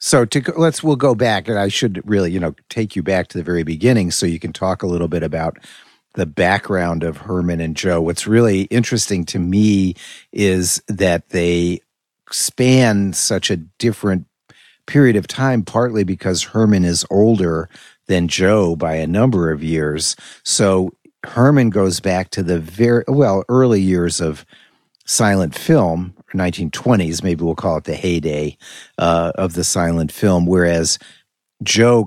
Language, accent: English, American